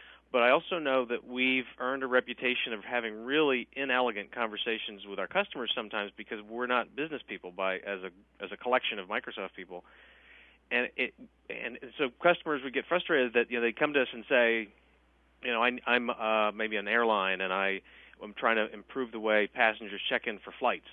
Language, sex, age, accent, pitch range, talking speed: English, male, 40-59, American, 110-130 Hz, 205 wpm